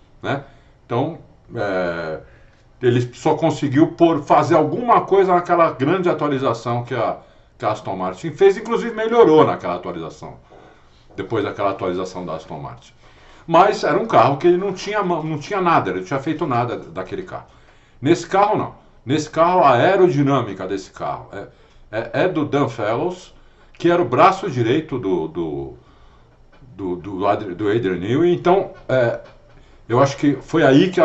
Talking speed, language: 160 wpm, Portuguese